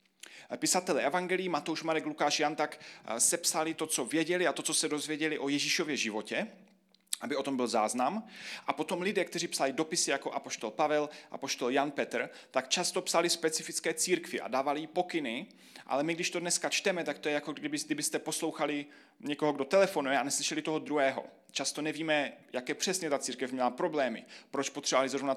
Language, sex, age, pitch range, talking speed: Czech, male, 30-49, 135-170 Hz, 180 wpm